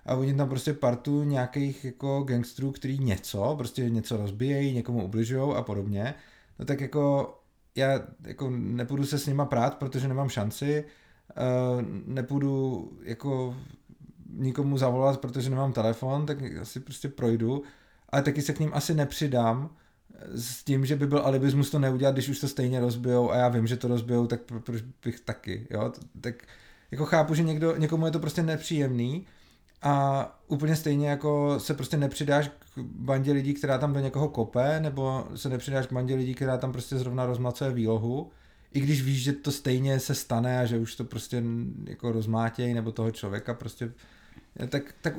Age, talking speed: 30-49, 175 wpm